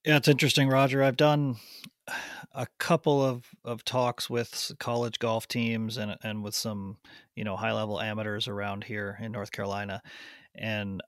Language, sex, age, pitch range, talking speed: English, male, 30-49, 110-125 Hz, 155 wpm